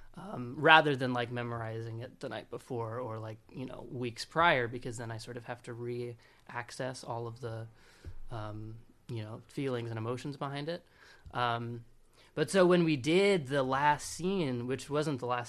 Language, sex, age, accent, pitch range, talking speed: English, male, 20-39, American, 120-150 Hz, 180 wpm